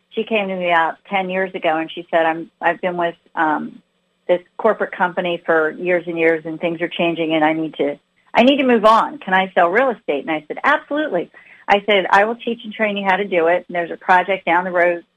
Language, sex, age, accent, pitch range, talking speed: English, female, 40-59, American, 175-210 Hz, 255 wpm